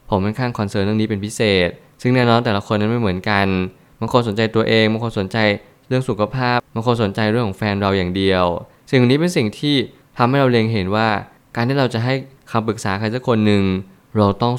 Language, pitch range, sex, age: Thai, 100-120 Hz, male, 20-39